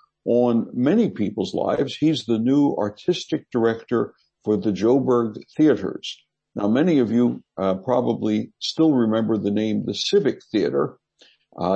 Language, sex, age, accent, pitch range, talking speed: English, male, 60-79, American, 110-150 Hz, 135 wpm